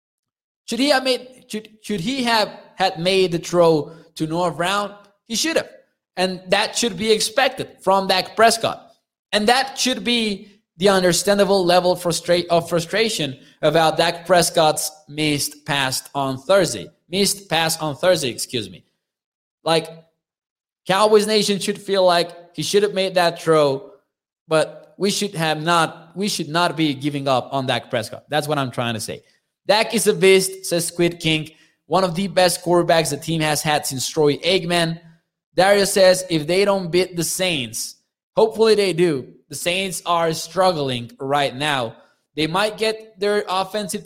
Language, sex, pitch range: English, male, 160-200 Hz